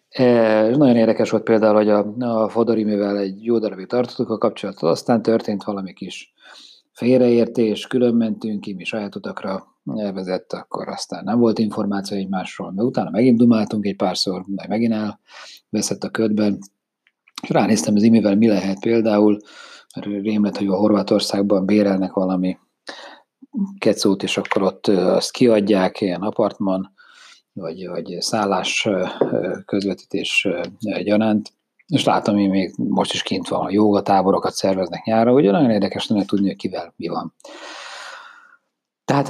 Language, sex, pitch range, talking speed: Hungarian, male, 100-120 Hz, 145 wpm